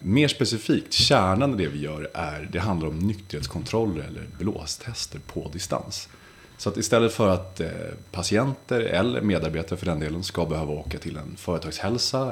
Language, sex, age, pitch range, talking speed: Swedish, male, 30-49, 85-110 Hz, 165 wpm